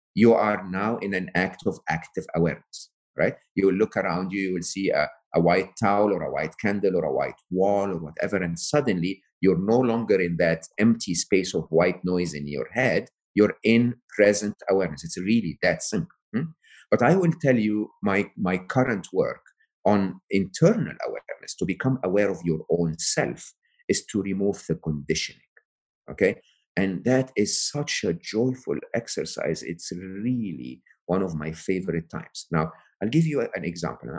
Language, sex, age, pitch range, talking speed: English, male, 50-69, 85-115 Hz, 175 wpm